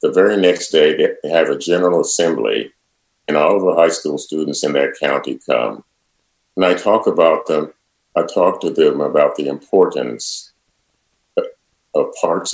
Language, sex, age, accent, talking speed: English, male, 50-69, American, 165 wpm